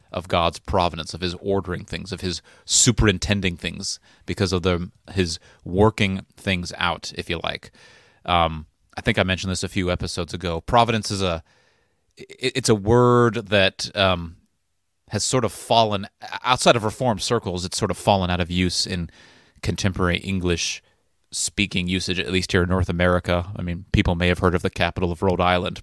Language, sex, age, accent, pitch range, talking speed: English, male, 30-49, American, 90-100 Hz, 175 wpm